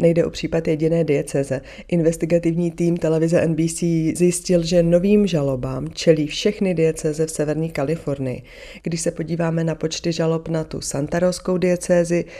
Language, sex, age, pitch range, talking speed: Czech, female, 30-49, 145-170 Hz, 140 wpm